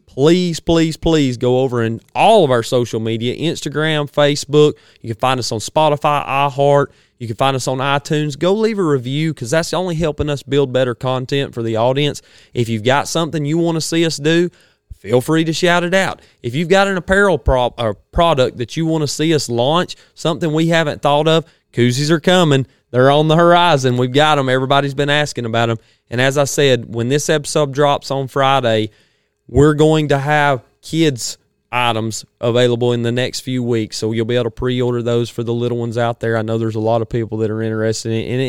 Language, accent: English, American